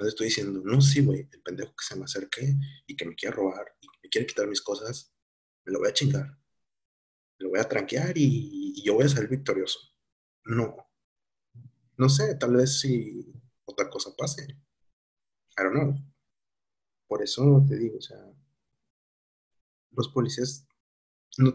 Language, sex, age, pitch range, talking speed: Spanish, male, 30-49, 105-140 Hz, 175 wpm